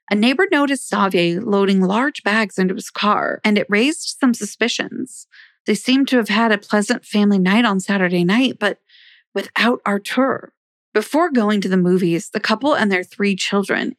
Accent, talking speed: American, 175 wpm